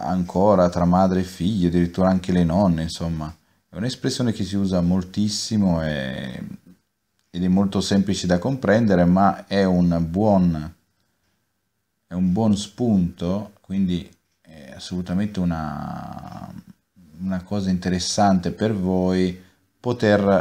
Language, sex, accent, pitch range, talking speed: Italian, male, native, 90-105 Hz, 120 wpm